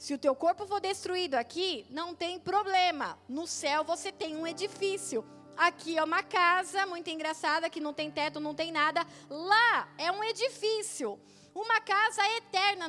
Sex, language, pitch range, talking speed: female, Portuguese, 275-395 Hz, 170 wpm